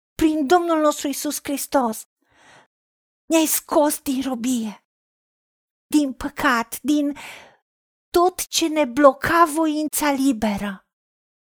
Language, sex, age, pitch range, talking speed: Romanian, female, 40-59, 250-295 Hz, 95 wpm